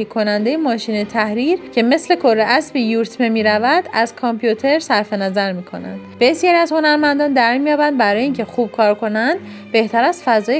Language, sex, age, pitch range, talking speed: Persian, female, 30-49, 225-295 Hz, 170 wpm